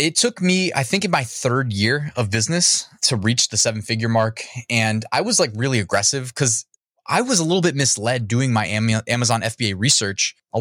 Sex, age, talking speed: male, 20-39, 205 wpm